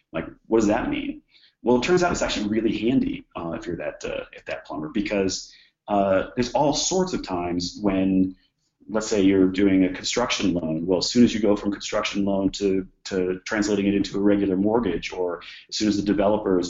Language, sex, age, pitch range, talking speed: English, male, 30-49, 95-115 Hz, 215 wpm